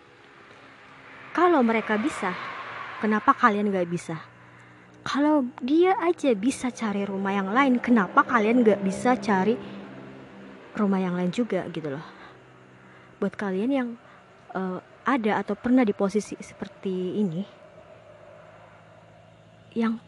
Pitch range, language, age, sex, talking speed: 180-240 Hz, Indonesian, 30-49, male, 115 wpm